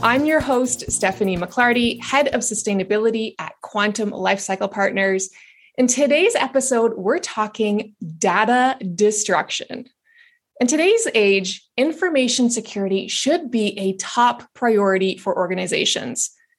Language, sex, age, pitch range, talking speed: English, female, 20-39, 200-260 Hz, 110 wpm